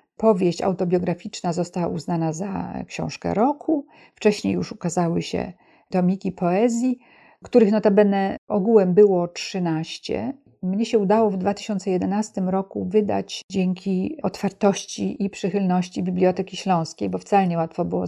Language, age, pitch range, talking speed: Polish, 50-69, 180-220 Hz, 120 wpm